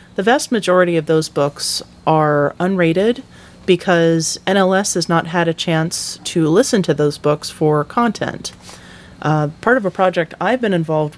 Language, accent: English, American